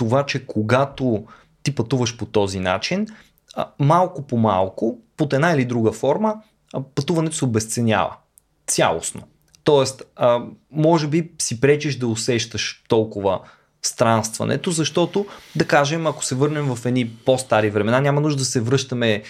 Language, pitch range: Bulgarian, 110-140 Hz